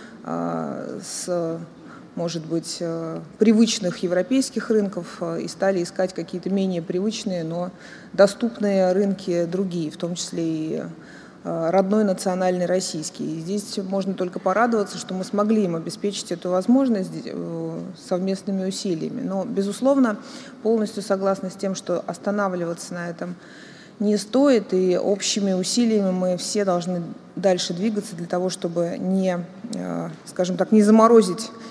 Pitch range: 175-210 Hz